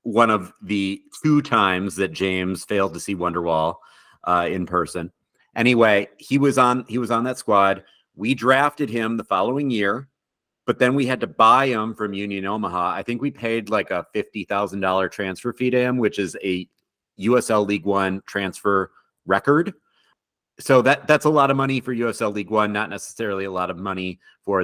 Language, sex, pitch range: English, male, 95-115 Hz